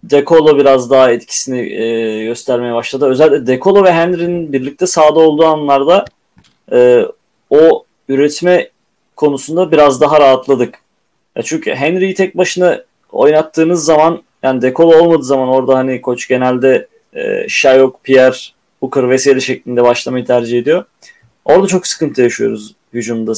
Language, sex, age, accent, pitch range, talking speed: Turkish, male, 30-49, native, 130-175 Hz, 130 wpm